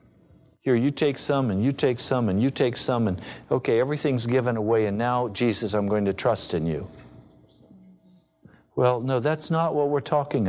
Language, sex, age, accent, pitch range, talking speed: English, male, 50-69, American, 120-180 Hz, 190 wpm